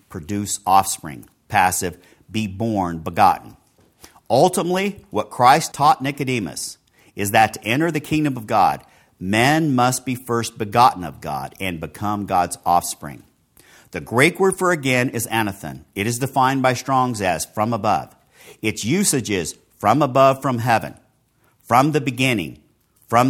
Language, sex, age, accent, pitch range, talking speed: English, male, 50-69, American, 100-135 Hz, 145 wpm